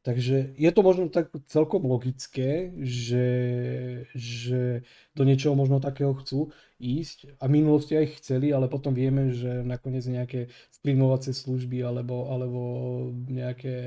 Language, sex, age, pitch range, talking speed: Slovak, male, 20-39, 125-135 Hz, 135 wpm